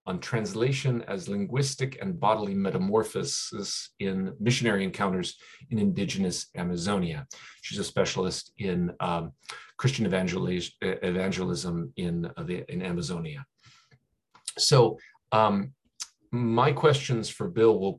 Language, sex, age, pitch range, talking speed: English, male, 40-59, 95-125 Hz, 100 wpm